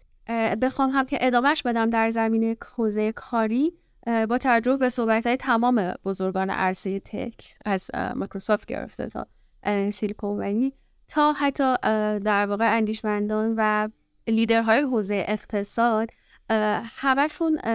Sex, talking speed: female, 110 wpm